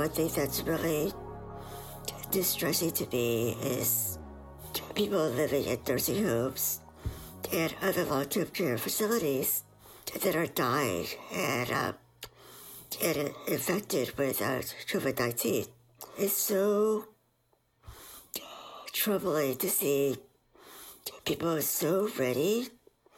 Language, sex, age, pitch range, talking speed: English, male, 60-79, 130-185 Hz, 95 wpm